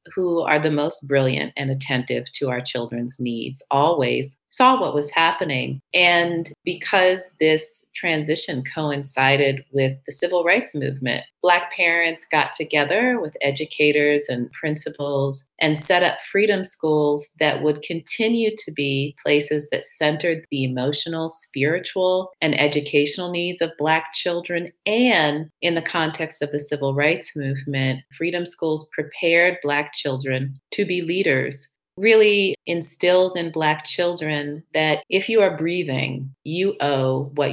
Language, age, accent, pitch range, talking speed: English, 40-59, American, 135-170 Hz, 140 wpm